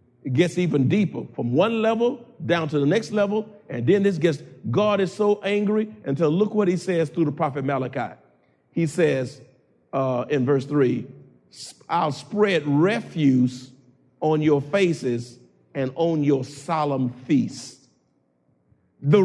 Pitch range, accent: 145-195 Hz, American